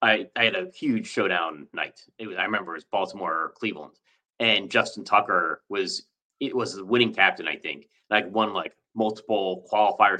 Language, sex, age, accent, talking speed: English, male, 30-49, American, 190 wpm